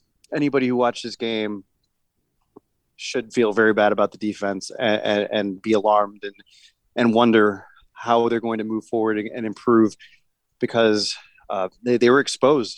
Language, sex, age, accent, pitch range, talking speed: English, male, 30-49, American, 110-130 Hz, 160 wpm